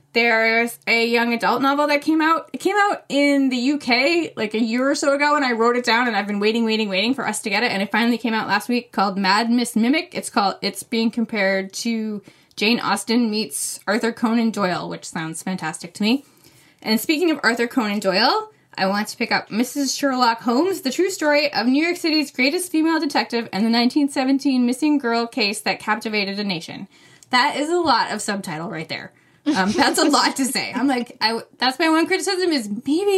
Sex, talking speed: female, 220 wpm